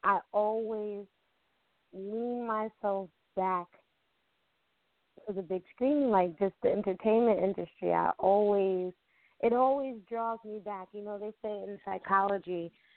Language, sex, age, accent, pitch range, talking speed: English, female, 20-39, American, 175-220 Hz, 125 wpm